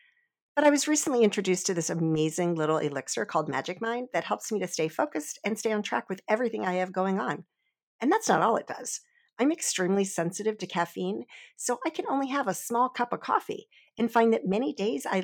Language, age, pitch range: English, 50-69, 175-245 Hz